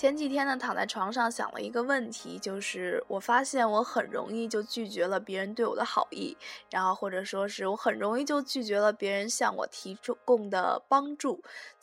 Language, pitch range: Chinese, 210-275 Hz